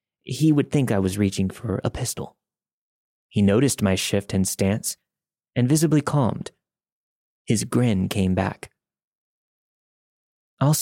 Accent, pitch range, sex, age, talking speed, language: American, 100-135 Hz, male, 30-49, 130 wpm, English